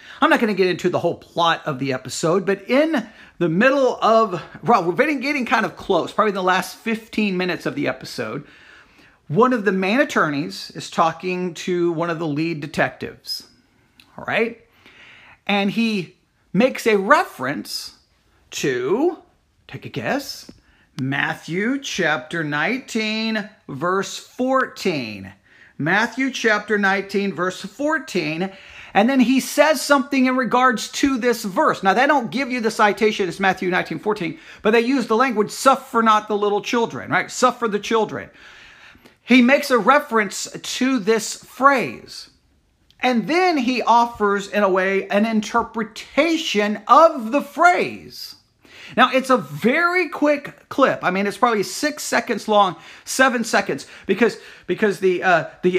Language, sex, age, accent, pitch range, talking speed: English, male, 40-59, American, 185-255 Hz, 150 wpm